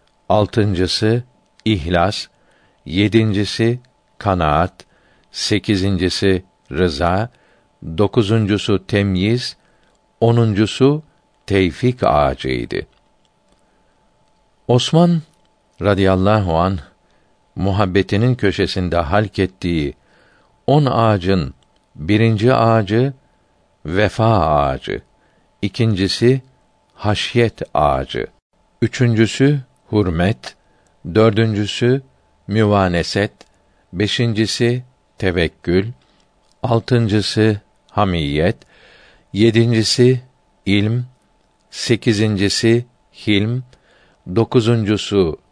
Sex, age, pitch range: male, 60-79, 95-120 Hz